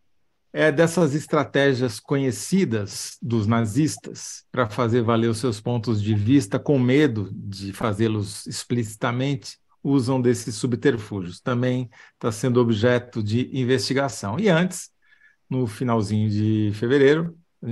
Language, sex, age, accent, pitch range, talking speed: Portuguese, male, 50-69, Brazilian, 105-130 Hz, 120 wpm